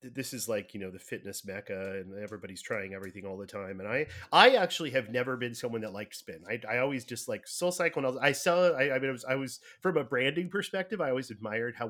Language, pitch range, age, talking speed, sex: English, 110-155 Hz, 30-49, 255 wpm, male